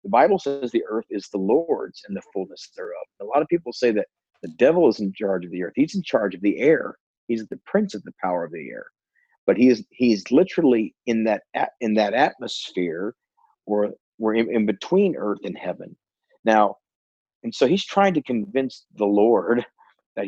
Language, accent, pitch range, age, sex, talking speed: English, American, 105-160 Hz, 40-59, male, 205 wpm